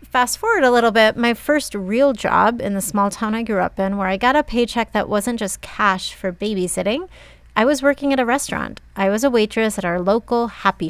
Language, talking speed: English, 230 wpm